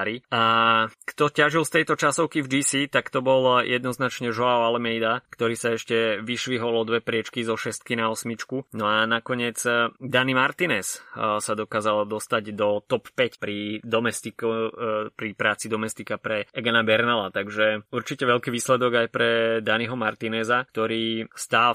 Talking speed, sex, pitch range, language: 145 wpm, male, 105-120 Hz, Slovak